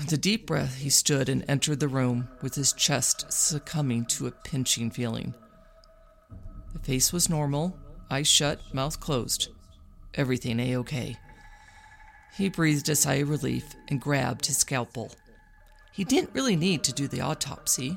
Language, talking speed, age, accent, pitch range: English, 155 wpm, 40-59, American, 130-200 Hz